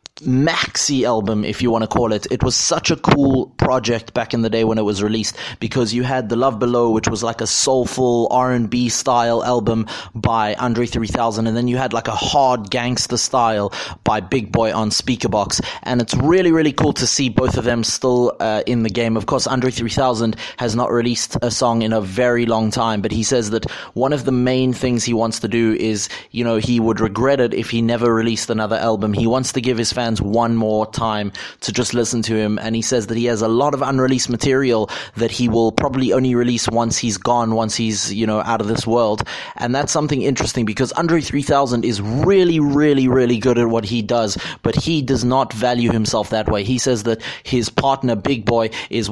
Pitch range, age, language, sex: 115-130 Hz, 30-49, English, male